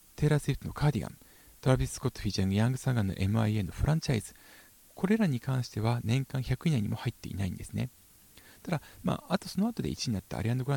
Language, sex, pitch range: Japanese, male, 95-150 Hz